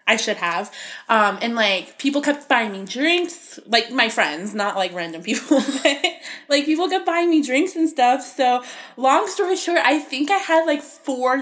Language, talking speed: English, 190 wpm